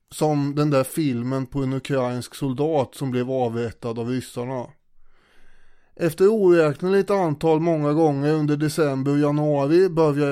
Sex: male